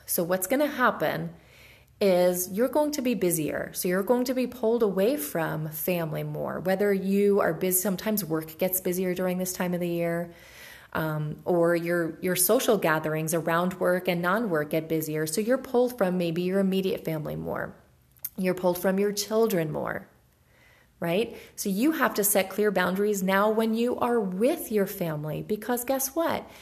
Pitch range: 175-240 Hz